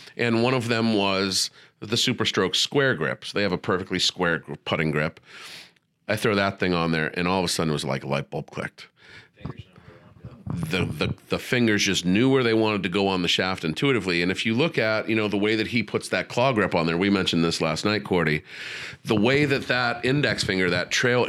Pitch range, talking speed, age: 95-130 Hz, 225 wpm, 40-59